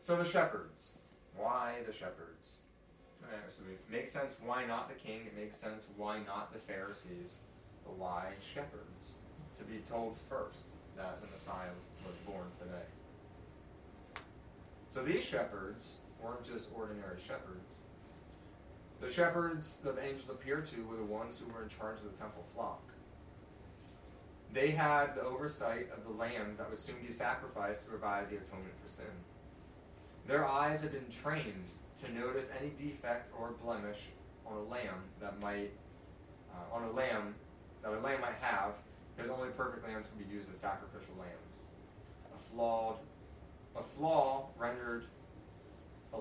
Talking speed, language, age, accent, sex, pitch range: 155 wpm, English, 30-49, American, male, 95-115 Hz